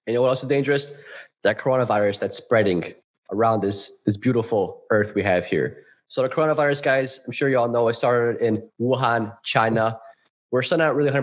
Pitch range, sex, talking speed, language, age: 105-125 Hz, male, 200 wpm, English, 20-39